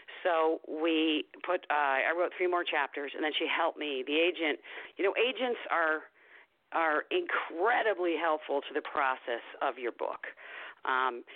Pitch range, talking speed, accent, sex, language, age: 145-175 Hz, 170 wpm, American, female, English, 50-69